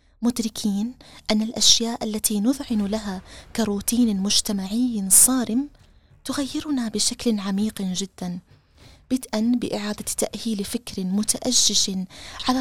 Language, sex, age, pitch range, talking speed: Arabic, female, 20-39, 195-240 Hz, 90 wpm